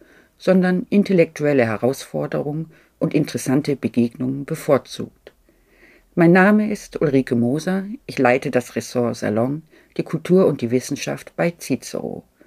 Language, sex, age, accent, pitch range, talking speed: German, female, 50-69, German, 130-175 Hz, 115 wpm